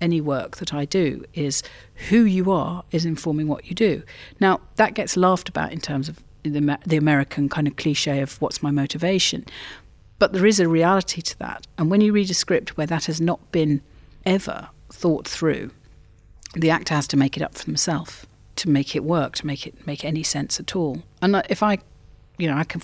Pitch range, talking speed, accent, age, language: 145-180 Hz, 210 wpm, British, 40-59, English